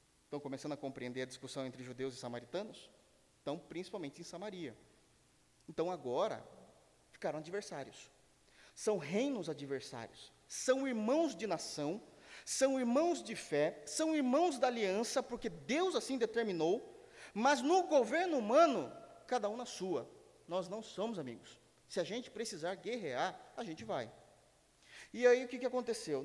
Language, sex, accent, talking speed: Portuguese, male, Brazilian, 145 wpm